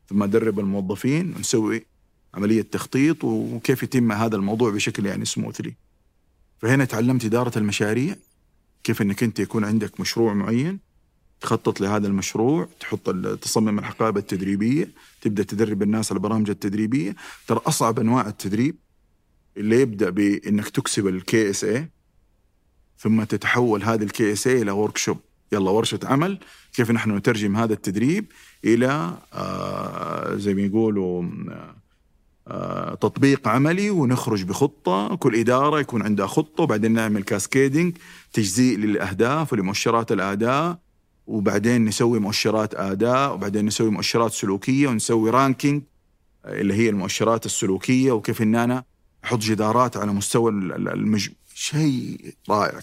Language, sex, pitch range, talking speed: Arabic, male, 100-125 Hz, 125 wpm